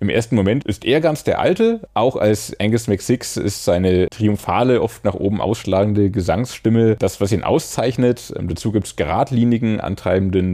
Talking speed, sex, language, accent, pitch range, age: 175 wpm, male, German, German, 90-130 Hz, 30-49